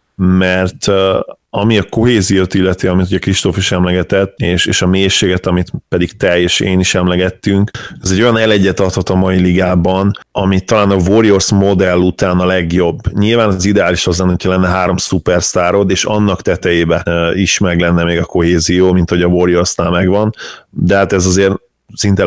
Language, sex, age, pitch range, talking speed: Hungarian, male, 30-49, 90-100 Hz, 180 wpm